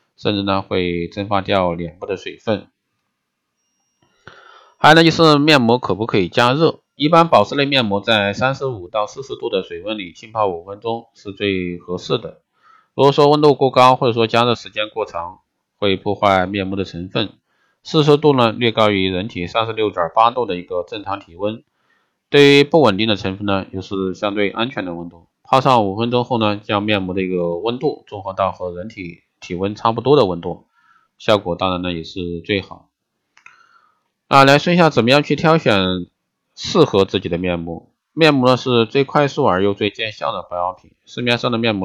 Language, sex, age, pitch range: Chinese, male, 20-39, 95-130 Hz